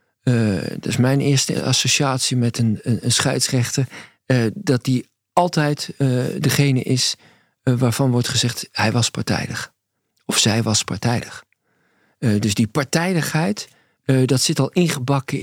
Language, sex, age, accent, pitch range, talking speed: English, male, 50-69, Dutch, 115-150 Hz, 150 wpm